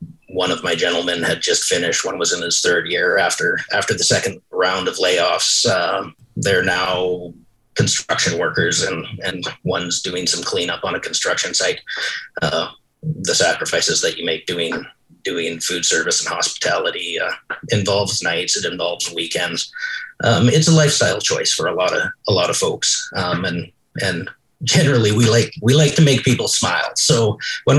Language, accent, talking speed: English, American, 175 wpm